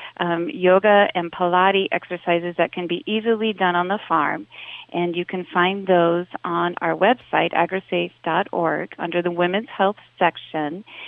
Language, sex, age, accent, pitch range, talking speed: English, female, 40-59, American, 170-190 Hz, 145 wpm